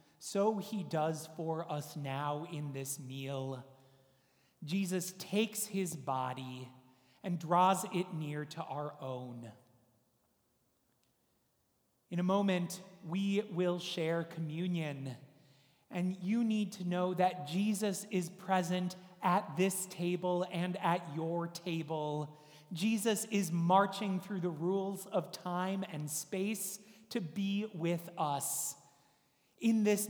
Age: 30-49